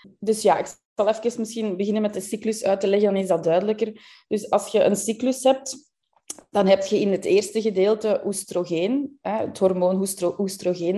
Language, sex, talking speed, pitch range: Dutch, female, 190 wpm, 180-225 Hz